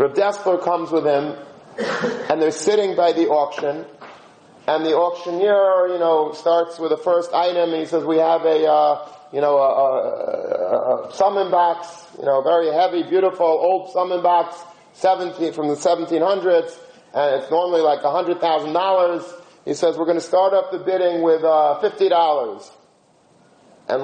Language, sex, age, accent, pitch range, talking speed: English, male, 40-59, American, 145-175 Hz, 165 wpm